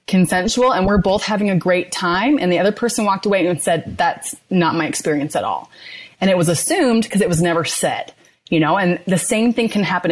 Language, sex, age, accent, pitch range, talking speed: English, female, 30-49, American, 170-225 Hz, 230 wpm